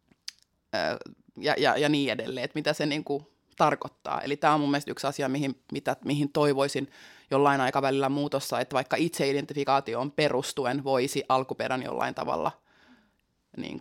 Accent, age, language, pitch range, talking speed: native, 20-39, Finnish, 135-155 Hz, 150 wpm